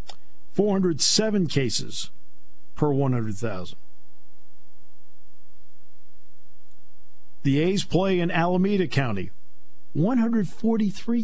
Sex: male